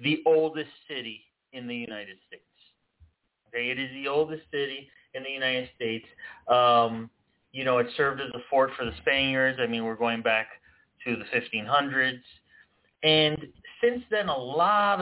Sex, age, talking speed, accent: male, 30-49, 160 wpm, American